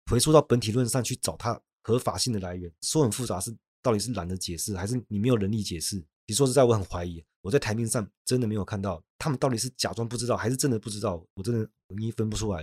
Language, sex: Chinese, male